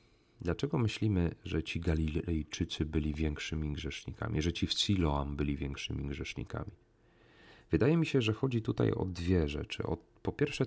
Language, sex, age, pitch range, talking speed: Polish, male, 40-59, 80-115 Hz, 150 wpm